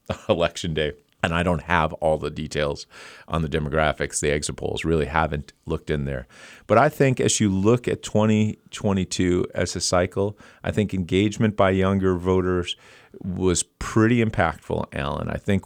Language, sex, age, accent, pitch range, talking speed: English, male, 50-69, American, 85-105 Hz, 165 wpm